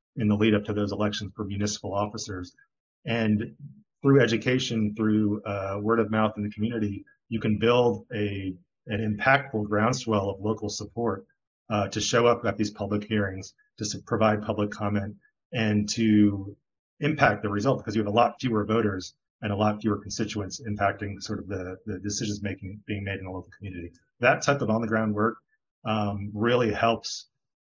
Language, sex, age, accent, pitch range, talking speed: English, male, 30-49, American, 100-115 Hz, 180 wpm